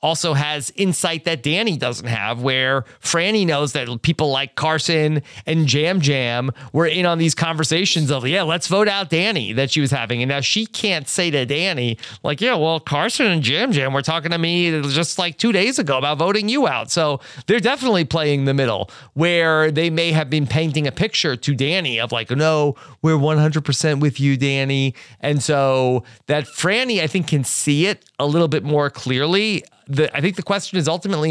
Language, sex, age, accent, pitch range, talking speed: English, male, 30-49, American, 135-170 Hz, 200 wpm